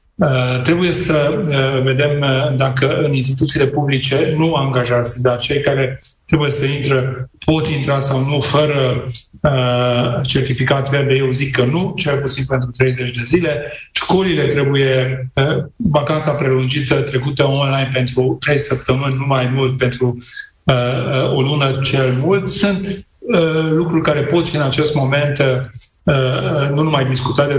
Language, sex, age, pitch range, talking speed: Romanian, male, 40-59, 135-155 Hz, 130 wpm